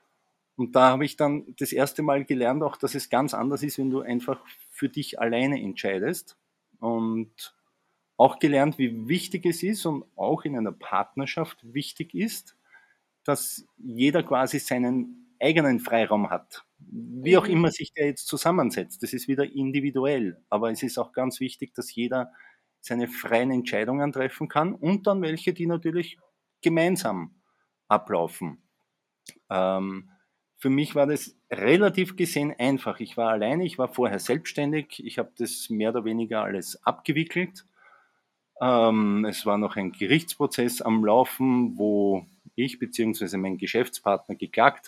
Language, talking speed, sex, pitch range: German, 150 wpm, male, 115-155 Hz